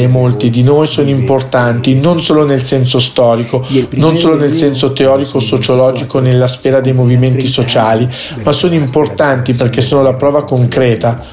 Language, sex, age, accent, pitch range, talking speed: Italian, male, 50-69, native, 125-145 Hz, 155 wpm